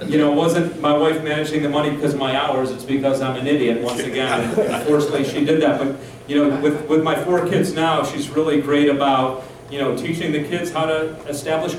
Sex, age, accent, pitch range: male, 40-59, American, 140-165 Hz